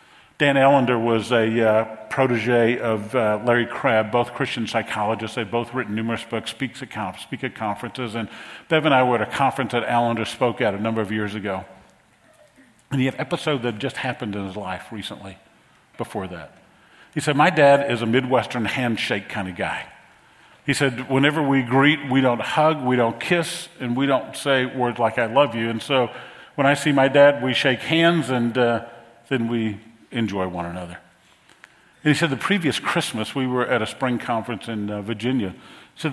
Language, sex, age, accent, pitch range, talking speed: English, male, 50-69, American, 110-135 Hz, 195 wpm